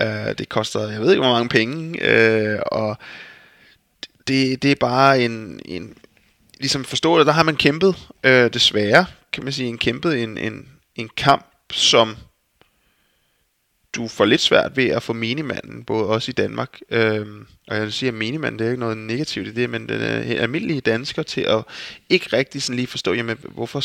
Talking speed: 190 wpm